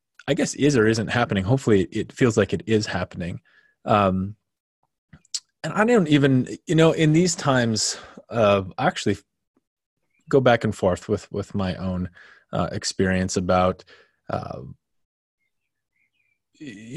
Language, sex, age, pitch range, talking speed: English, male, 20-39, 95-120 Hz, 135 wpm